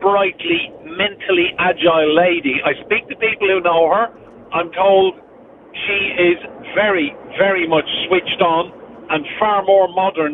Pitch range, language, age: 170-230 Hz, English, 50-69